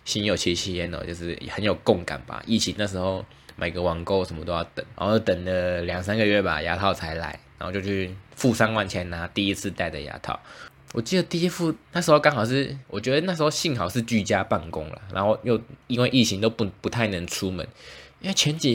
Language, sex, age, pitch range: Chinese, male, 20-39, 95-130 Hz